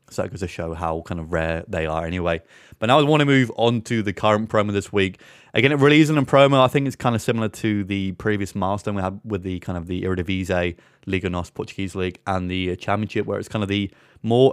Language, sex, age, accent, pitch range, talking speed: English, male, 20-39, British, 95-115 Hz, 255 wpm